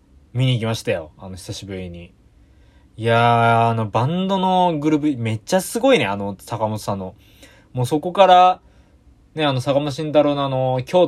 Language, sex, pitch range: Japanese, male, 100-145 Hz